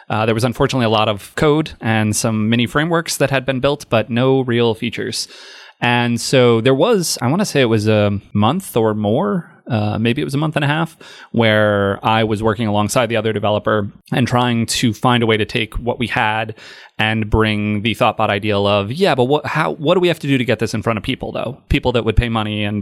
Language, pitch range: English, 110-130 Hz